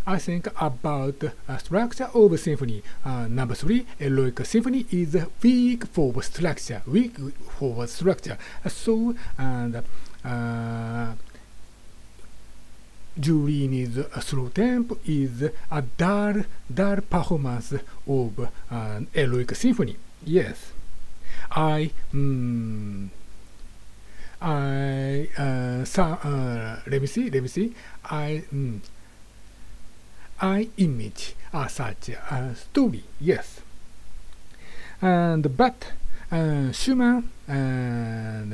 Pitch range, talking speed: 120-180 Hz, 100 wpm